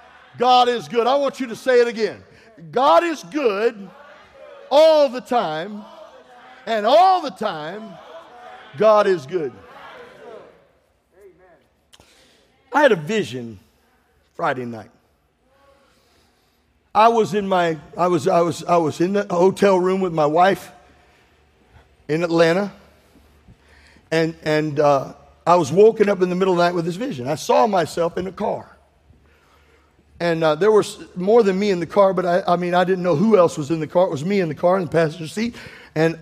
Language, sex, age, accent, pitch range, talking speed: English, male, 50-69, American, 155-205 Hz, 170 wpm